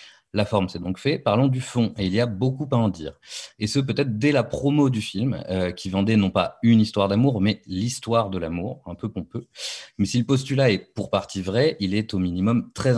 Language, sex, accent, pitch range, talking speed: French, male, French, 95-120 Hz, 240 wpm